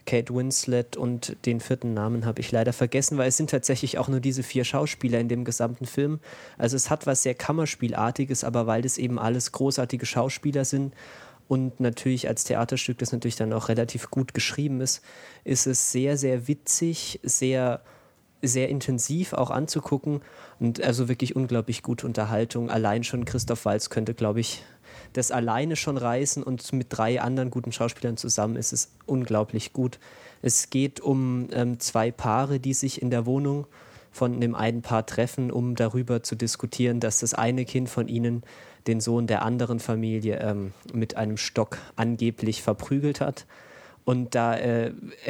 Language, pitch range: German, 115-130 Hz